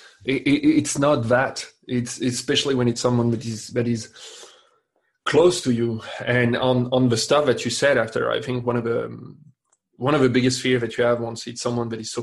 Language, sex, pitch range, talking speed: English, male, 120-130 Hz, 210 wpm